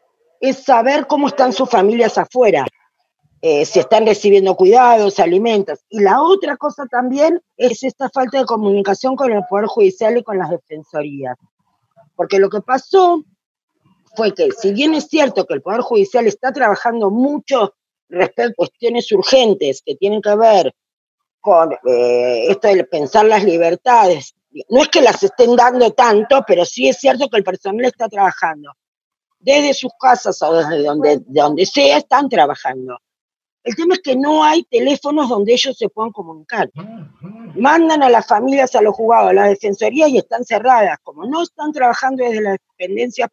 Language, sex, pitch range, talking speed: Spanish, female, 200-270 Hz, 165 wpm